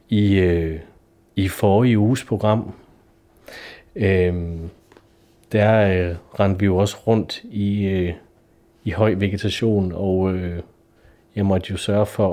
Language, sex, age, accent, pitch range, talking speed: Danish, male, 30-49, native, 95-115 Hz, 125 wpm